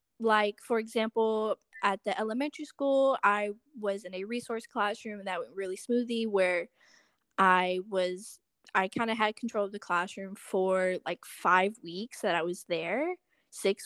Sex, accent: female, American